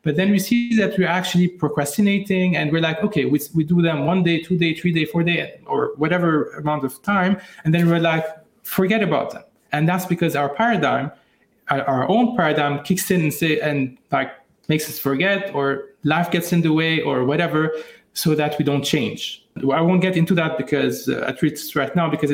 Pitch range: 150-185 Hz